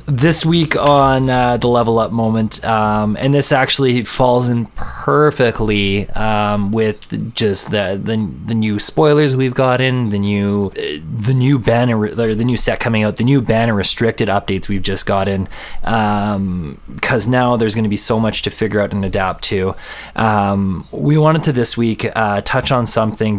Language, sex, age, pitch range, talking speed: English, male, 20-39, 100-125 Hz, 180 wpm